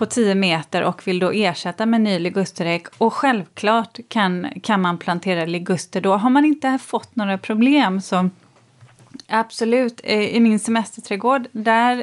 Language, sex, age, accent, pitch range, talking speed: Swedish, female, 30-49, native, 180-230 Hz, 145 wpm